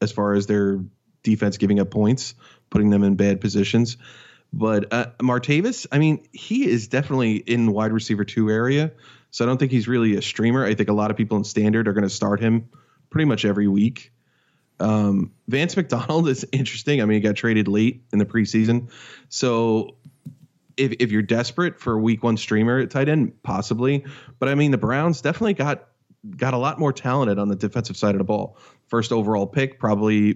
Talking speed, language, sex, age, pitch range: 200 wpm, English, male, 20-39, 105-125 Hz